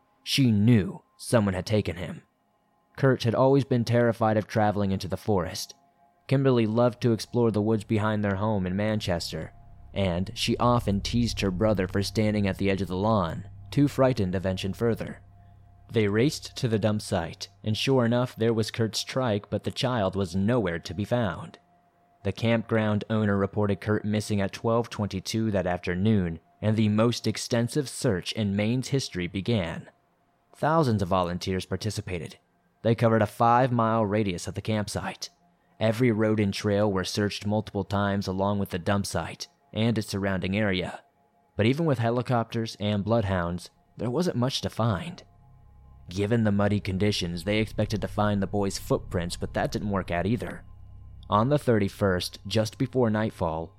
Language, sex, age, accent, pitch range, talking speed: English, male, 30-49, American, 95-115 Hz, 165 wpm